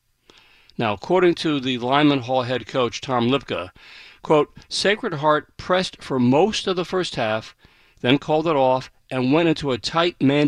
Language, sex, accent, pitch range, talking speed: English, male, American, 130-175 Hz, 170 wpm